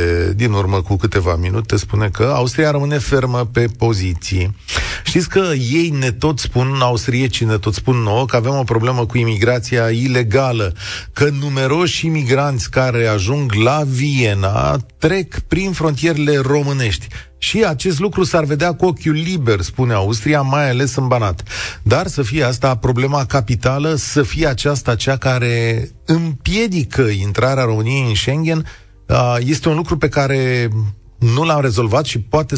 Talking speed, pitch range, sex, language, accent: 150 wpm, 110-145 Hz, male, Romanian, native